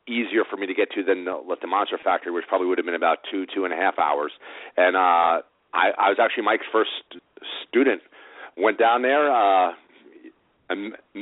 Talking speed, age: 195 wpm, 40-59